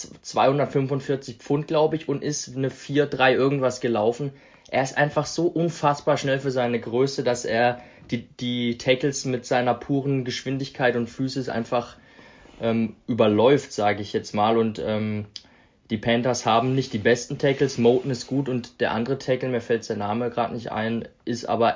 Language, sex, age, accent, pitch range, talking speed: German, male, 20-39, German, 115-135 Hz, 175 wpm